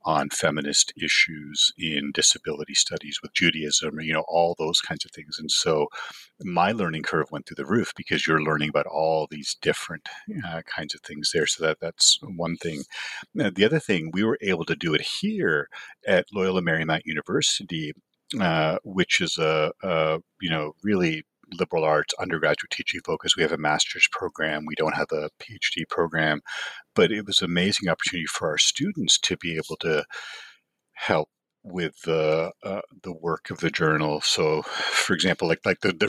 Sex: male